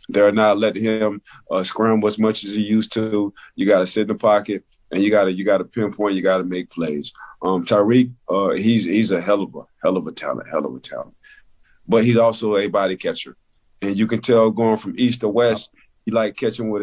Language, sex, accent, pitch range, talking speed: English, male, American, 100-110 Hz, 230 wpm